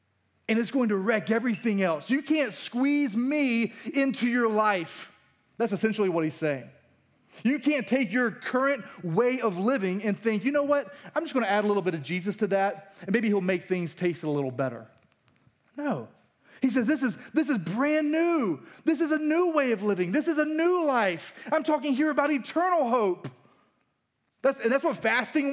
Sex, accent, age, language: male, American, 30-49, English